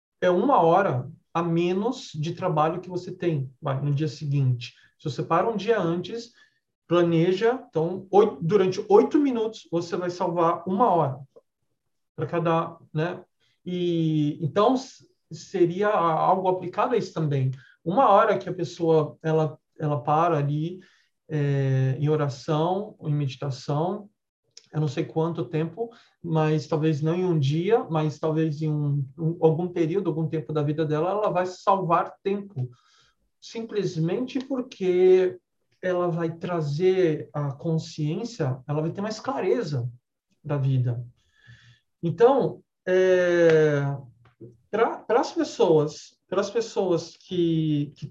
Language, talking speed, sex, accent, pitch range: English, 125 wpm, male, Brazilian, 150-185 Hz